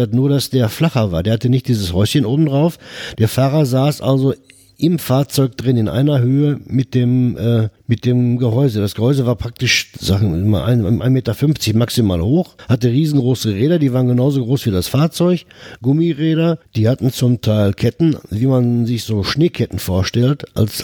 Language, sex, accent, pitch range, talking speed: German, male, German, 110-140 Hz, 165 wpm